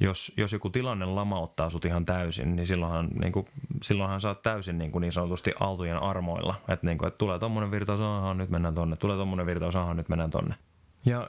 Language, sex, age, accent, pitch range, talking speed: Finnish, male, 20-39, native, 85-100 Hz, 195 wpm